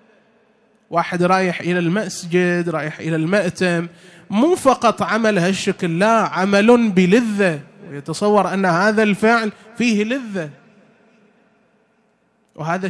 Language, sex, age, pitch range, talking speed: Arabic, male, 30-49, 155-195 Hz, 100 wpm